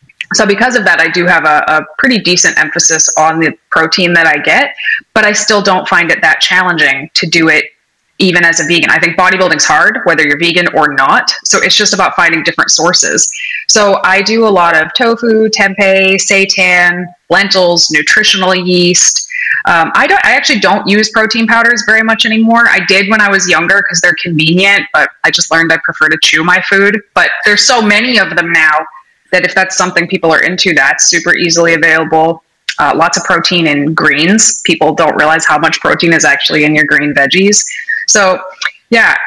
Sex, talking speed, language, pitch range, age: female, 195 wpm, English, 165-205 Hz, 20-39